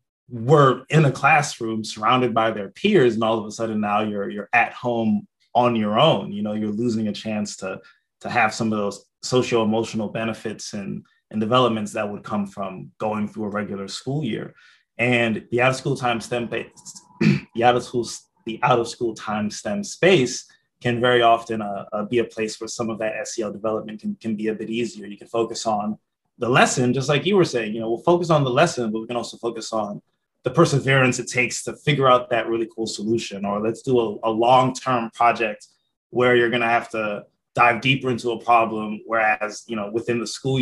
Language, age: English, 20-39